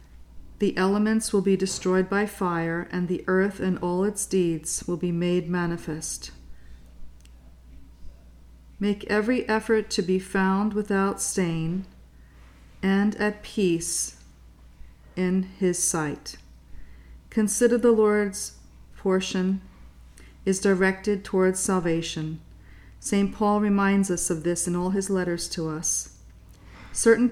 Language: English